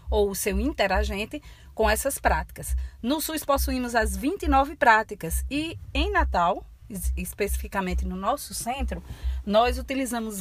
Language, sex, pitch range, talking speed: Portuguese, female, 180-250 Hz, 125 wpm